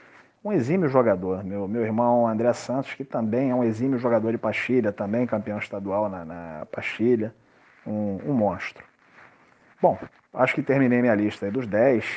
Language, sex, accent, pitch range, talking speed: Portuguese, male, Brazilian, 100-115 Hz, 165 wpm